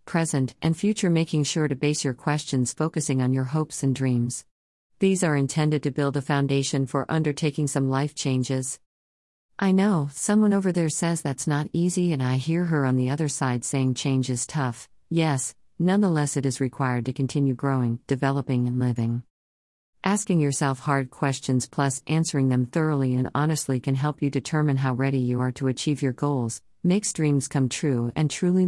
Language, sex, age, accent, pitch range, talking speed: English, female, 50-69, American, 130-155 Hz, 180 wpm